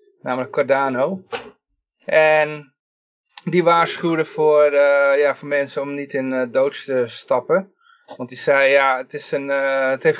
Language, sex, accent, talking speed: Dutch, male, Dutch, 160 wpm